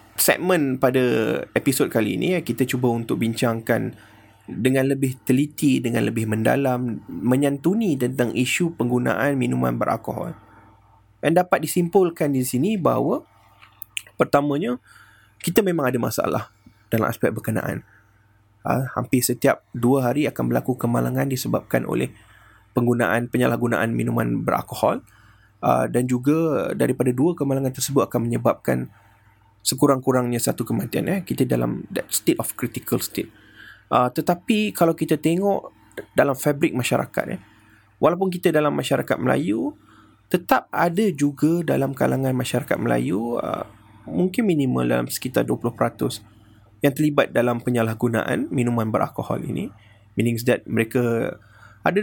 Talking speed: 120 wpm